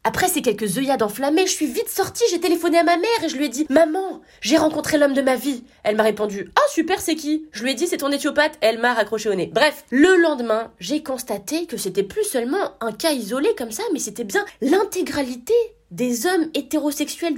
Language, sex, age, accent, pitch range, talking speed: French, female, 20-39, French, 220-340 Hz, 250 wpm